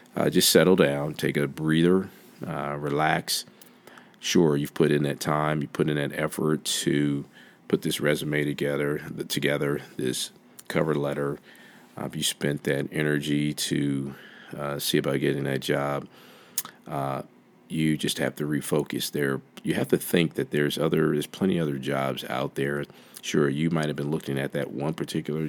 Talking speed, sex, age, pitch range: 170 wpm, male, 40-59, 70-75 Hz